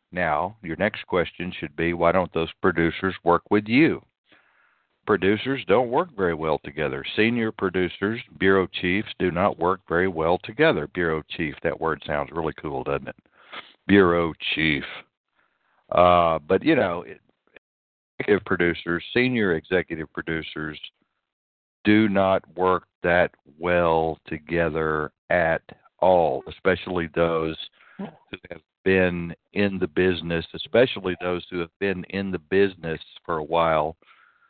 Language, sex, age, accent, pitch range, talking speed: English, male, 60-79, American, 85-95 Hz, 130 wpm